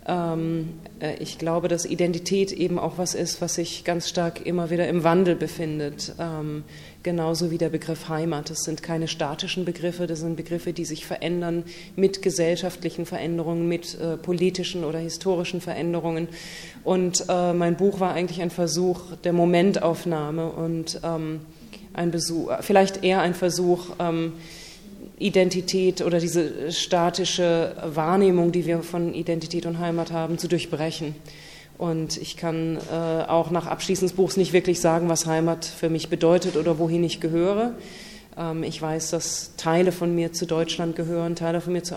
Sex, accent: female, German